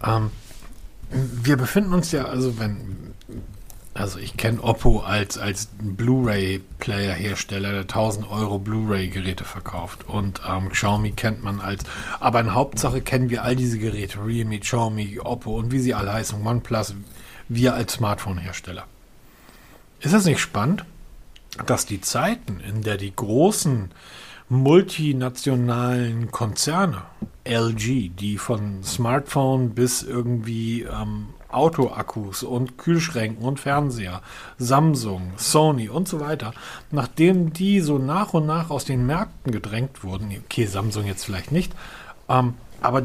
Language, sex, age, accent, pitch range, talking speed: German, male, 40-59, German, 105-130 Hz, 135 wpm